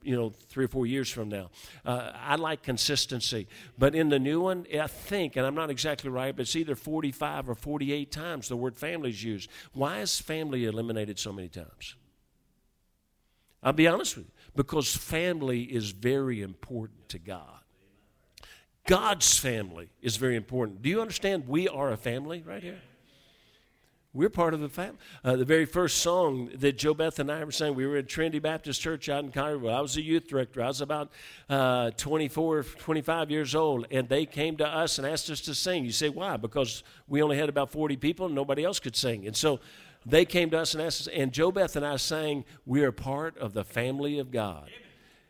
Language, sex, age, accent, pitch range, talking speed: English, male, 50-69, American, 125-155 Hz, 205 wpm